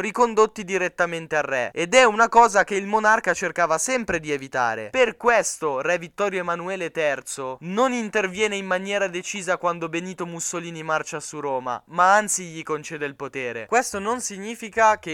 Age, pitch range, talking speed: 10-29, 150-195 Hz, 165 wpm